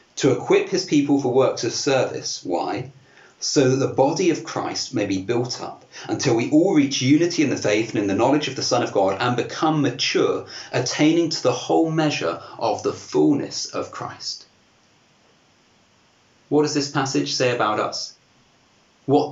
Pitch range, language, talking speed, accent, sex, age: 125-165 Hz, English, 175 wpm, British, male, 40-59